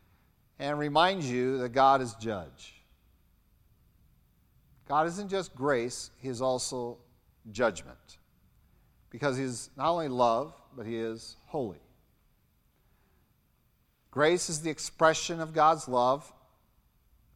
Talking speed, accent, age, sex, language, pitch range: 110 wpm, American, 50-69, male, English, 115-145 Hz